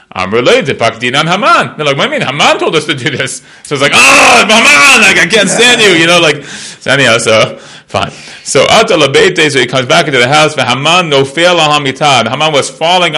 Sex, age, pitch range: male, 30-49, 135-205 Hz